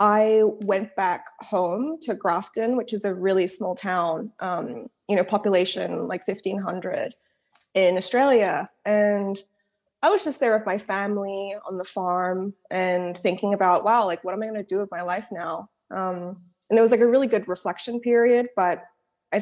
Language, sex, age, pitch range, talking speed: English, female, 20-39, 180-220 Hz, 180 wpm